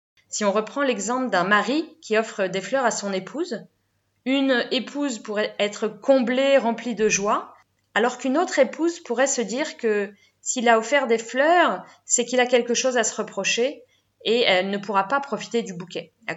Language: French